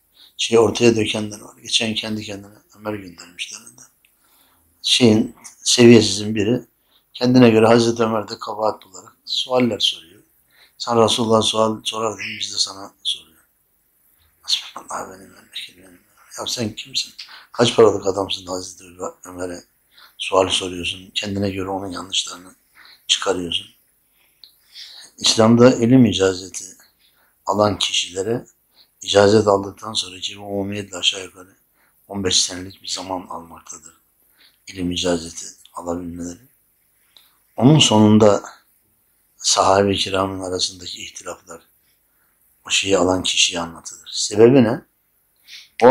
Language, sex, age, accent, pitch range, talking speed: Turkish, male, 60-79, native, 95-115 Hz, 105 wpm